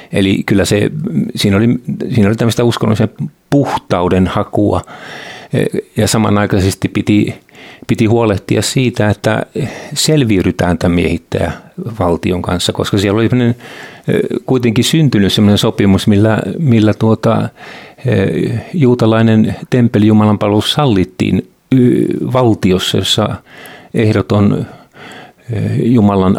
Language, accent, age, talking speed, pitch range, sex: Finnish, native, 50-69, 85 wpm, 100-120 Hz, male